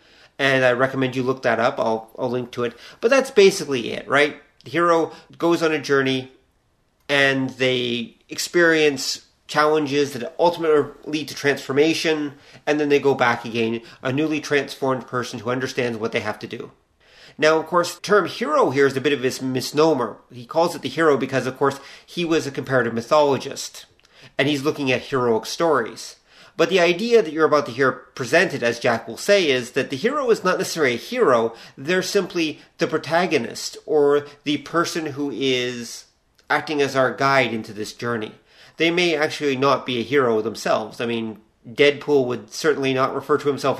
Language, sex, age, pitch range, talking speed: English, male, 40-59, 125-155 Hz, 185 wpm